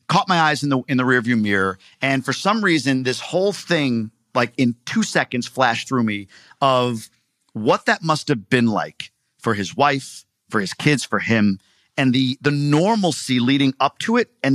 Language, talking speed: English, 195 wpm